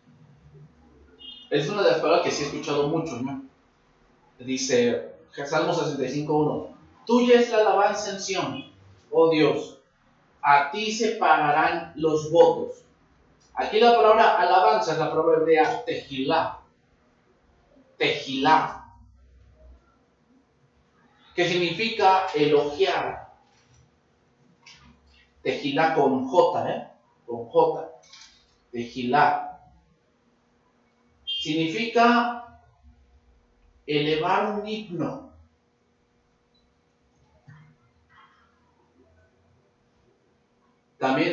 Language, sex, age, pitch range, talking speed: English, male, 40-59, 120-180 Hz, 80 wpm